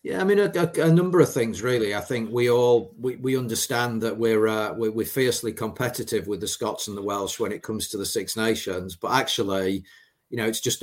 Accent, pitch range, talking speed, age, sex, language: British, 95-115 Hz, 240 wpm, 40-59, male, English